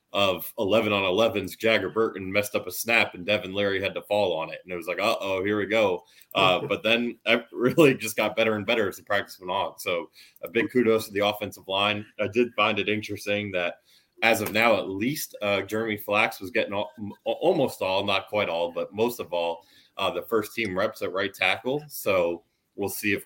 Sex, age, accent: male, 20-39, American